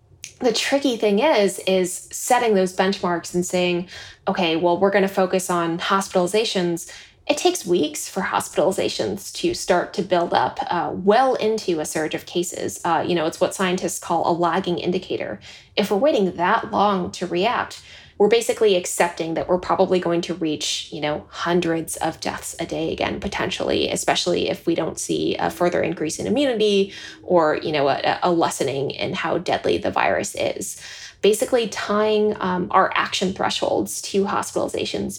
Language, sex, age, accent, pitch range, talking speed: English, female, 20-39, American, 175-210 Hz, 170 wpm